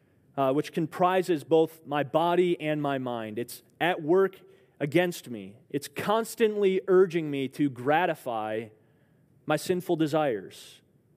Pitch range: 130-170 Hz